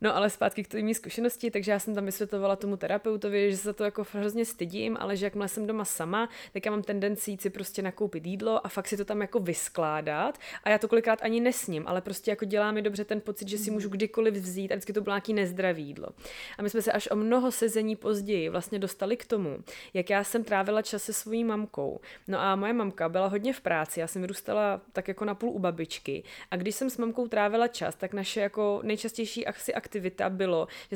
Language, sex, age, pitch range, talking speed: Slovak, female, 20-39, 200-225 Hz, 230 wpm